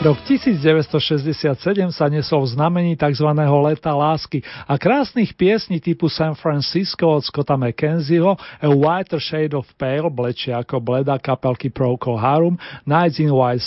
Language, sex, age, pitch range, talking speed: Slovak, male, 40-59, 140-180 Hz, 140 wpm